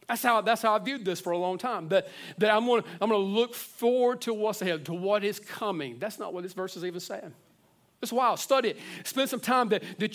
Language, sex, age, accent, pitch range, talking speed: English, male, 40-59, American, 190-255 Hz, 255 wpm